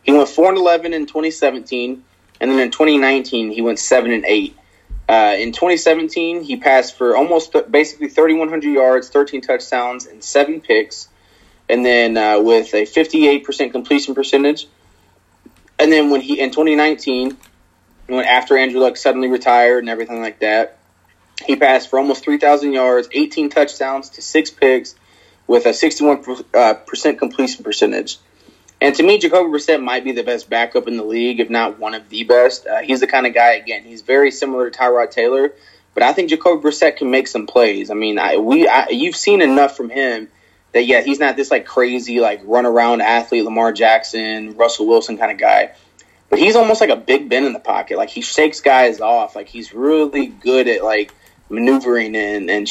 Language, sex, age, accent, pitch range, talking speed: English, male, 20-39, American, 115-150 Hz, 200 wpm